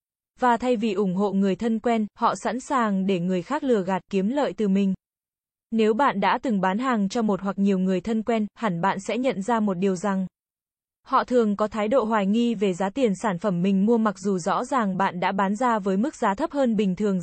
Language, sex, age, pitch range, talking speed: Vietnamese, female, 10-29, 200-240 Hz, 245 wpm